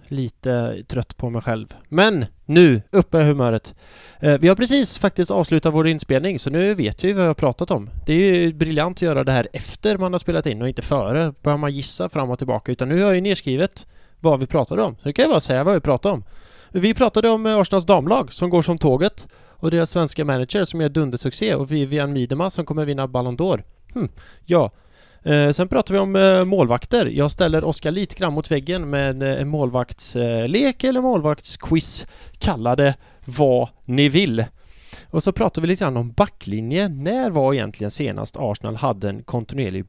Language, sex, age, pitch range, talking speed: English, male, 20-39, 125-180 Hz, 200 wpm